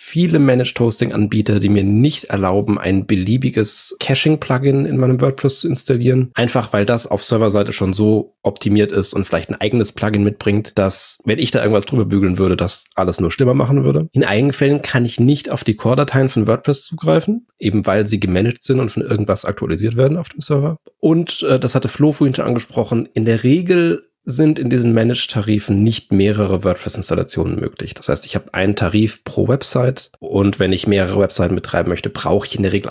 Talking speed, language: 195 wpm, German